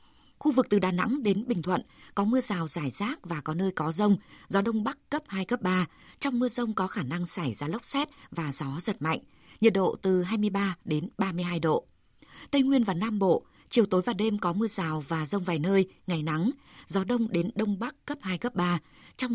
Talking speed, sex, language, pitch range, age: 230 wpm, female, Vietnamese, 180-220 Hz, 20-39